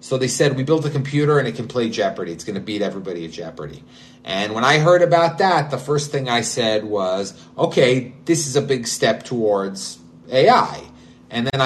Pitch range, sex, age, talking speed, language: 105-140 Hz, male, 30-49, 210 wpm, English